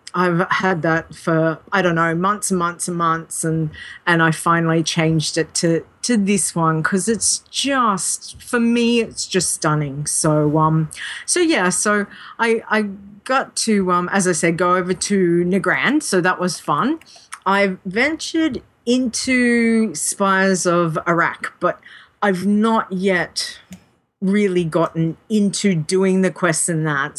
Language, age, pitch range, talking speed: English, 40-59, 170-230 Hz, 150 wpm